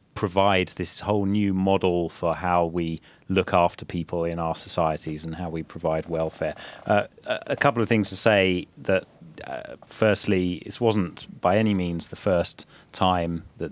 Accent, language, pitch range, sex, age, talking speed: British, Finnish, 85-100 Hz, male, 30-49, 170 wpm